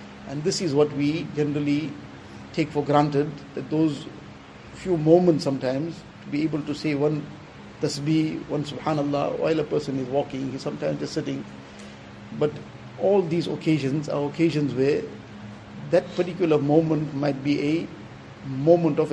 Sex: male